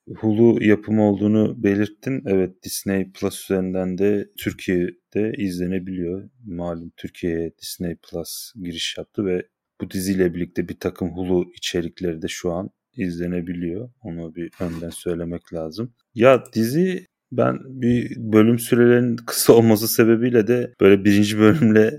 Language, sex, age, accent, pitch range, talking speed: Turkish, male, 30-49, native, 90-110 Hz, 130 wpm